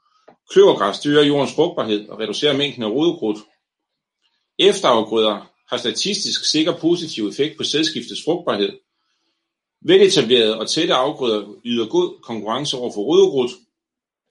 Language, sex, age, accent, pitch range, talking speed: Danish, male, 40-59, native, 110-185 Hz, 115 wpm